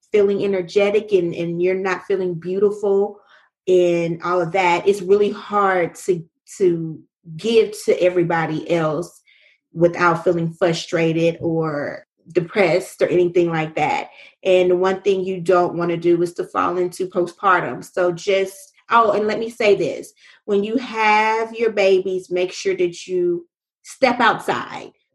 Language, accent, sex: English, American, female